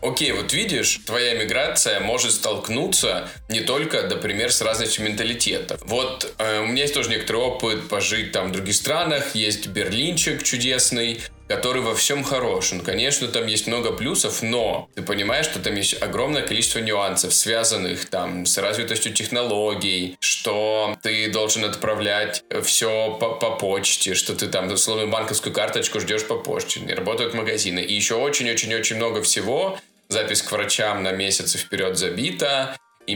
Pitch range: 100-115 Hz